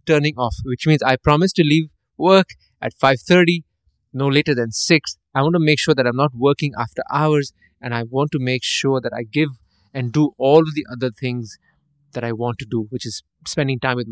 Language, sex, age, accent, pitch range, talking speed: English, male, 20-39, Indian, 125-160 Hz, 220 wpm